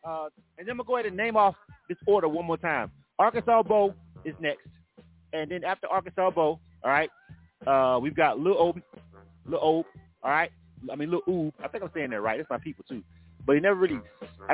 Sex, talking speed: male, 220 wpm